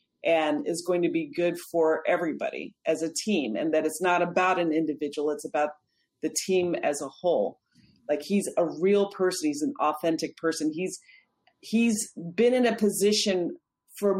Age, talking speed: 40-59, 175 wpm